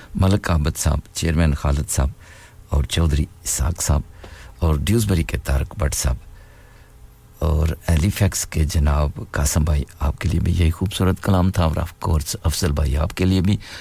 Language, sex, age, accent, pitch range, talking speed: English, male, 60-79, Indian, 80-95 Hz, 180 wpm